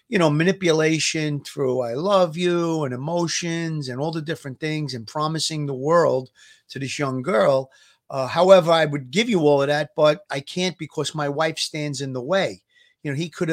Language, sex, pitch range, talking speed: English, male, 125-155 Hz, 200 wpm